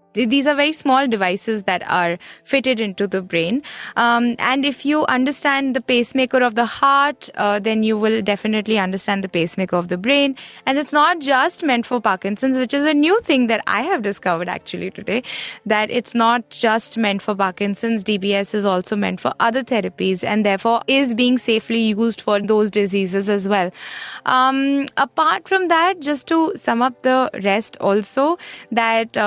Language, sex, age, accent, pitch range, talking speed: English, female, 20-39, Indian, 210-275 Hz, 180 wpm